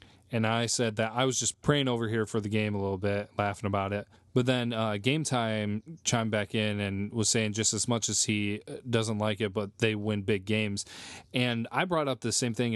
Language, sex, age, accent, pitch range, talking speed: English, male, 20-39, American, 100-120 Hz, 235 wpm